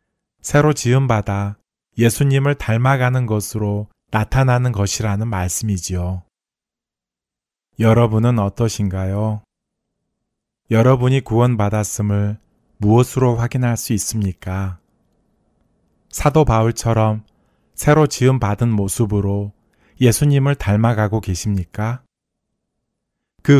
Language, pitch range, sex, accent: Korean, 100-120 Hz, male, native